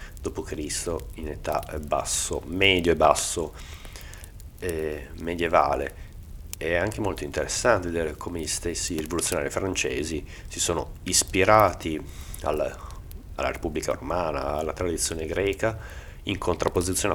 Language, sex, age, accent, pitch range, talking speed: Italian, male, 30-49, native, 80-95 Hz, 110 wpm